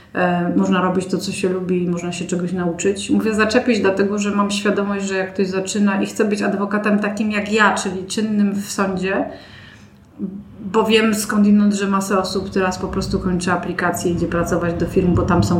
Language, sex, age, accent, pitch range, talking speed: Polish, female, 30-49, native, 180-210 Hz, 190 wpm